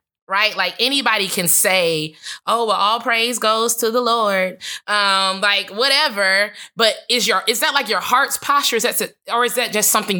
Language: English